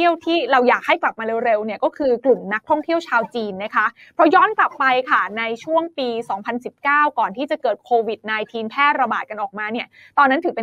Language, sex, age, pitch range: Thai, female, 20-39, 230-305 Hz